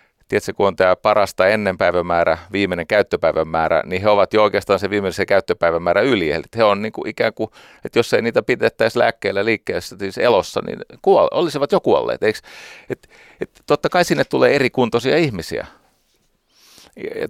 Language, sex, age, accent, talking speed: Finnish, male, 40-59, native, 155 wpm